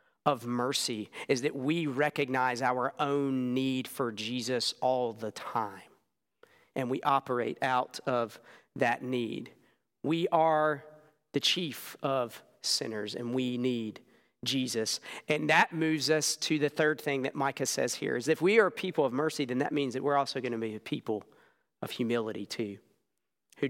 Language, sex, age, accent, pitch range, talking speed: English, male, 40-59, American, 125-160 Hz, 165 wpm